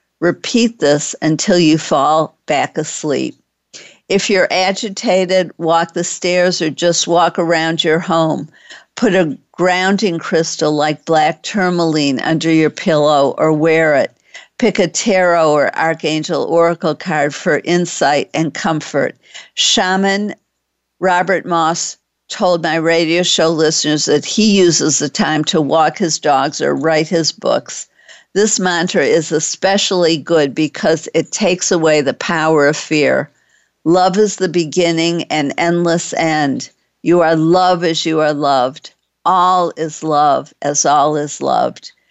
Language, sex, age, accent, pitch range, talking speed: English, female, 50-69, American, 155-180 Hz, 140 wpm